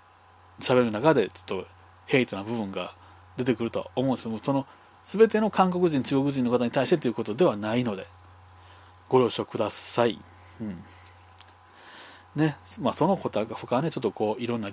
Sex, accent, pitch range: male, native, 95-135 Hz